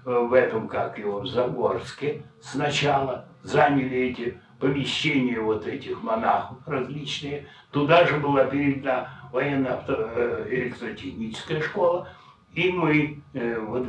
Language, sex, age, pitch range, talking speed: Russian, male, 60-79, 125-150 Hz, 100 wpm